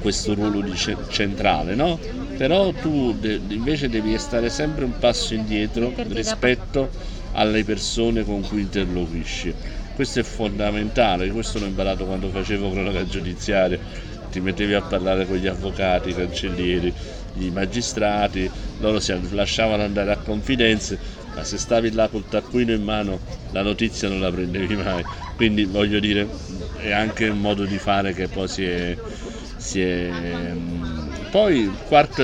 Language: Italian